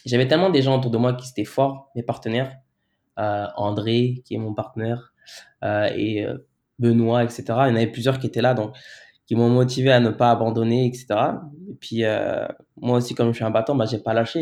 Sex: male